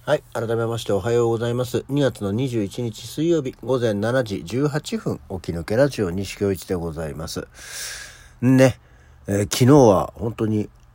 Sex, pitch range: male, 95-130 Hz